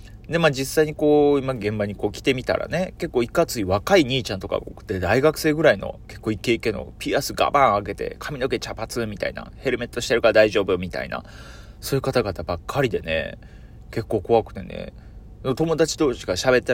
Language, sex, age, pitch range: Japanese, male, 30-49, 105-140 Hz